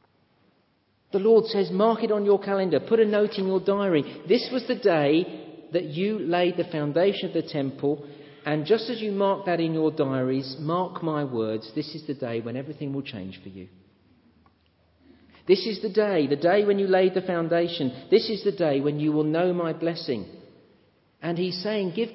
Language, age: English, 40-59